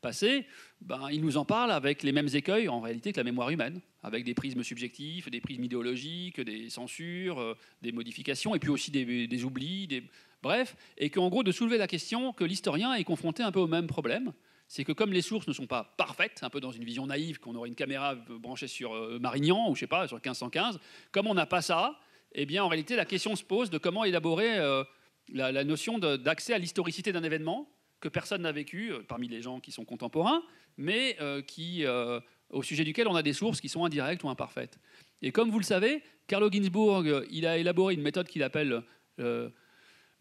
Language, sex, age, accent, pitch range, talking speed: French, male, 40-59, French, 130-185 Hz, 220 wpm